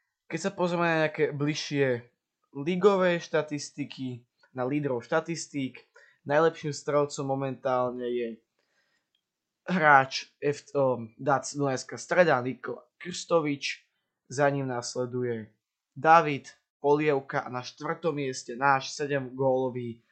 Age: 20-39